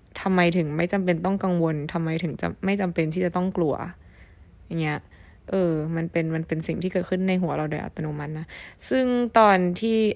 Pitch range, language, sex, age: 165-210 Hz, Thai, female, 20-39